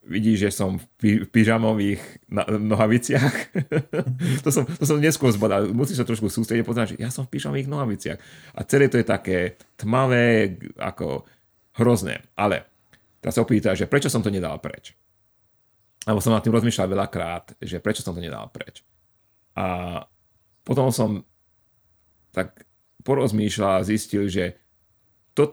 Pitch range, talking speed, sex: 95-115 Hz, 145 wpm, male